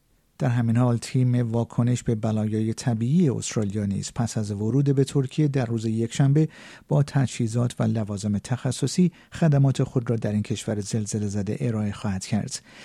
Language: Persian